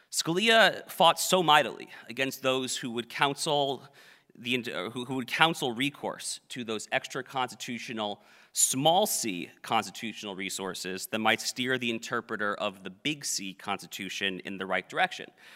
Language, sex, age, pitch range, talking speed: English, male, 30-49, 110-150 Hz, 145 wpm